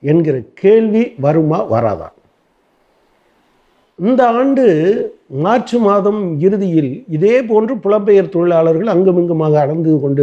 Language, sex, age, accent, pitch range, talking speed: Tamil, male, 50-69, native, 150-210 Hz, 95 wpm